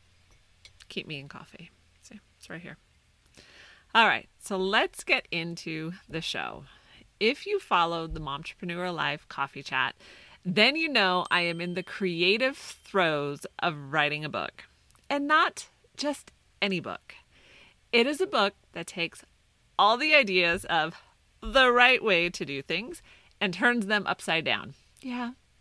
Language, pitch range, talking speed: English, 160-225 Hz, 150 wpm